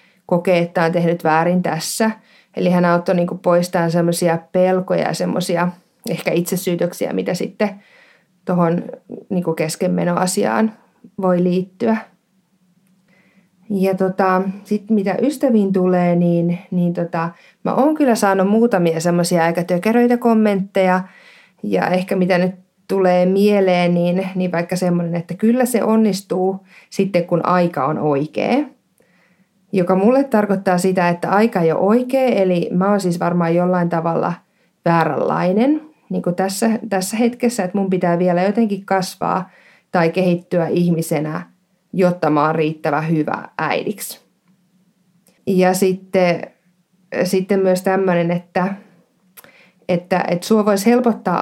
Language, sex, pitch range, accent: Finnish, female, 175-195 Hz, native